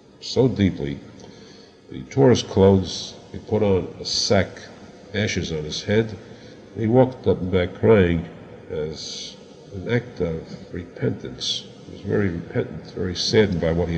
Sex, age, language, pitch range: male, 50-69, English, 85-115 Hz